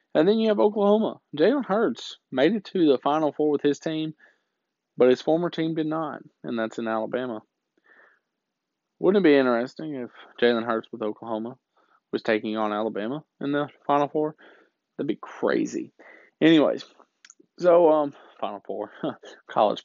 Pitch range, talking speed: 120-160 Hz, 155 wpm